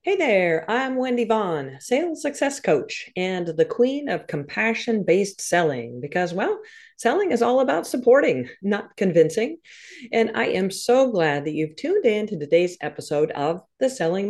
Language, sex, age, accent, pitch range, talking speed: English, female, 40-59, American, 170-285 Hz, 160 wpm